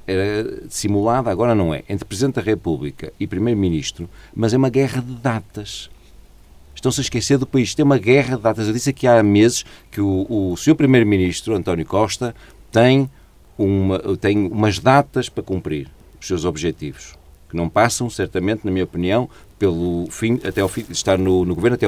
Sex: male